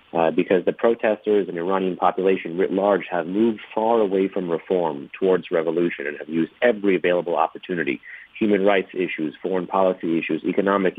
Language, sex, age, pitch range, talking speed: English, male, 30-49, 85-100 Hz, 170 wpm